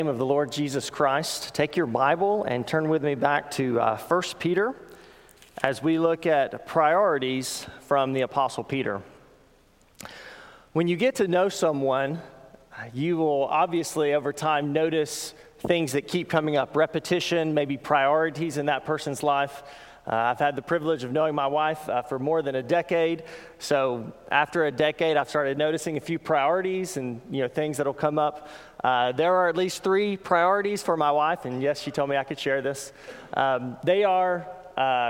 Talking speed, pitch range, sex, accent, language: 180 wpm, 140-170 Hz, male, American, English